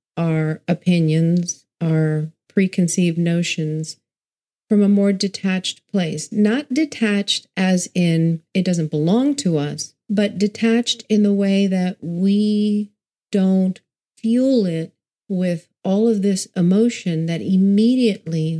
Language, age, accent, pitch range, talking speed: English, 50-69, American, 165-205 Hz, 115 wpm